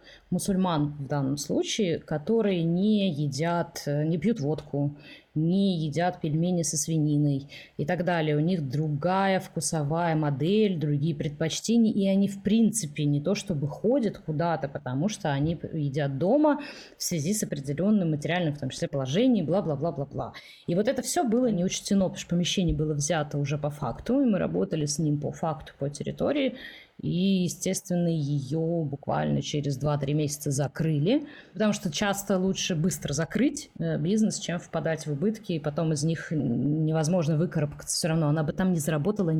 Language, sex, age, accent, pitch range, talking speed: Russian, female, 20-39, native, 150-200 Hz, 160 wpm